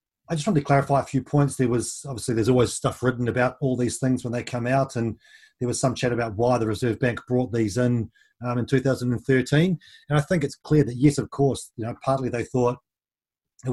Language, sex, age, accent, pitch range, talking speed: English, male, 30-49, Australian, 115-140 Hz, 235 wpm